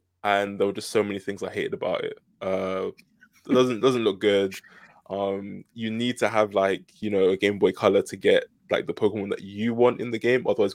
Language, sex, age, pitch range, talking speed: English, male, 20-39, 100-125 Hz, 230 wpm